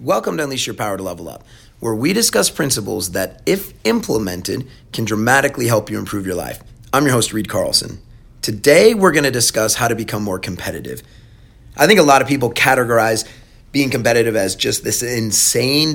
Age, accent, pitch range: 30-49, American, 110-130 Hz